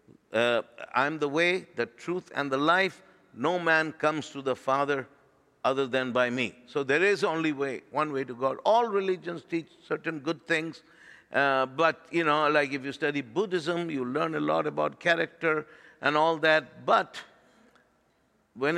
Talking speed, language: 175 wpm, English